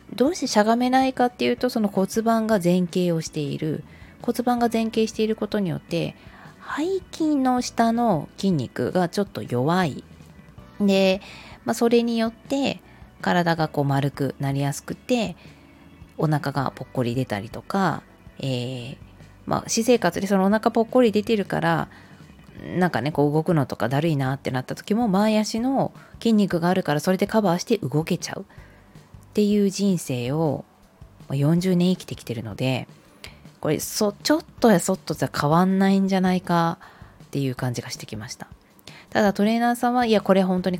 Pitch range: 145-220 Hz